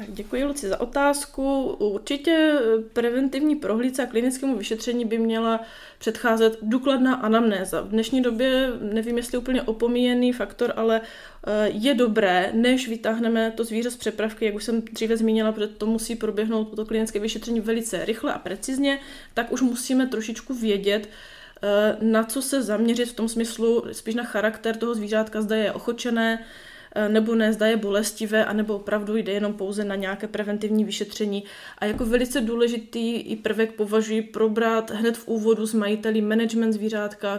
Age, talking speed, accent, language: 20-39, 155 wpm, native, Czech